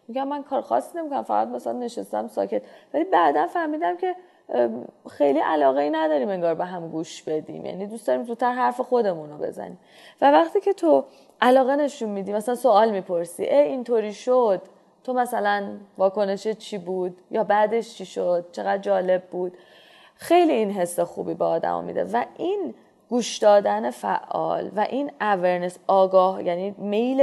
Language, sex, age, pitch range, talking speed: Persian, female, 20-39, 185-240 Hz, 160 wpm